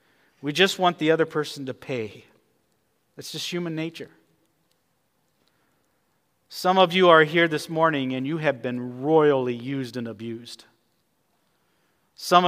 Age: 50-69